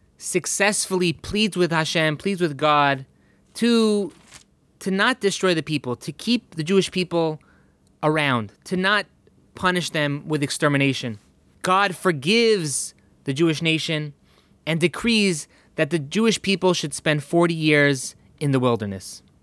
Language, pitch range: English, 145-190 Hz